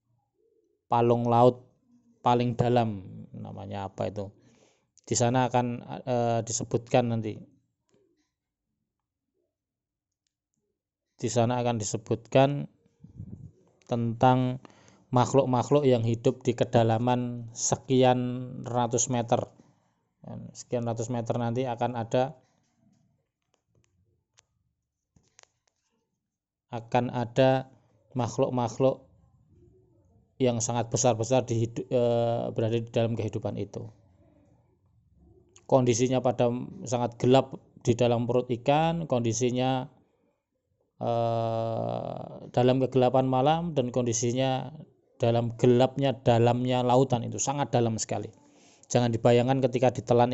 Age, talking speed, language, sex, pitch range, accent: 20-39, 85 wpm, Indonesian, male, 115-125 Hz, native